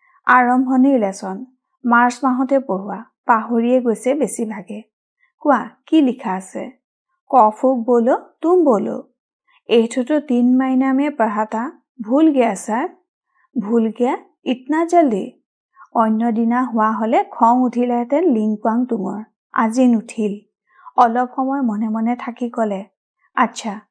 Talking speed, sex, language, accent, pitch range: 105 wpm, female, Hindi, native, 225-275 Hz